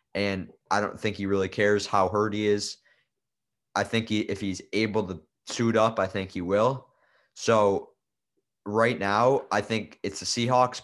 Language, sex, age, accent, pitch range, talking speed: English, male, 20-39, American, 100-110 Hz, 175 wpm